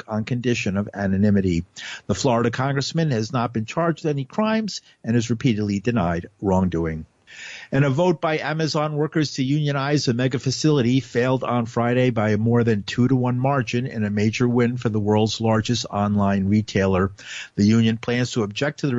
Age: 50-69